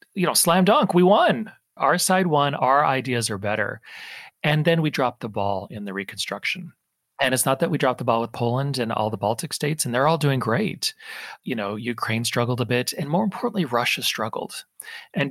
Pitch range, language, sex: 115-185 Hz, English, male